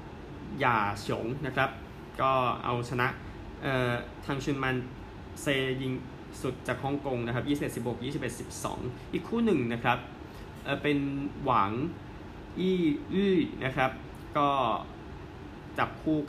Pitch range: 115-140 Hz